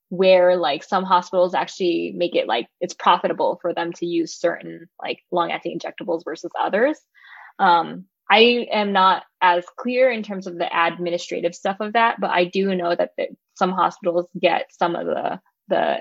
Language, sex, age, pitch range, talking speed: English, female, 10-29, 175-205 Hz, 170 wpm